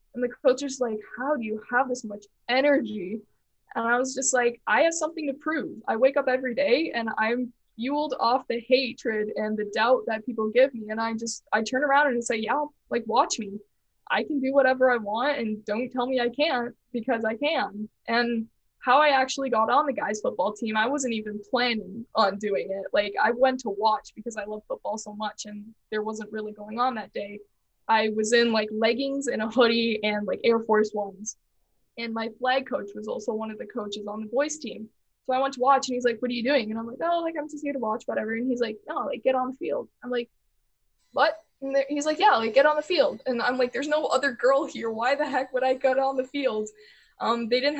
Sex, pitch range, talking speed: female, 220-265 Hz, 245 wpm